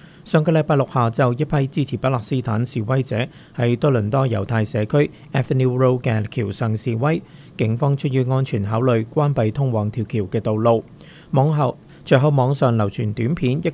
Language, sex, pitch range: Chinese, male, 115-140 Hz